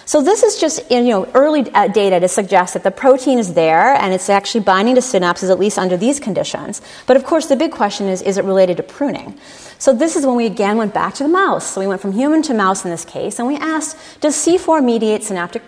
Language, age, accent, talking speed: English, 30-49, American, 255 wpm